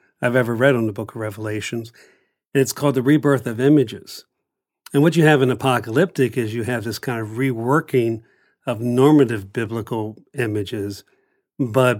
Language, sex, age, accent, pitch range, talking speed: English, male, 50-69, American, 115-135 Hz, 165 wpm